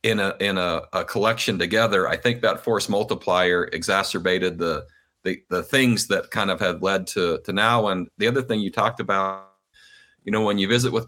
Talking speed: 205 wpm